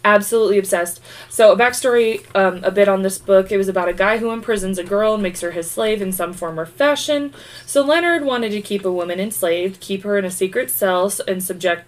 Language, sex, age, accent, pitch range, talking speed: English, female, 20-39, American, 185-235 Hz, 230 wpm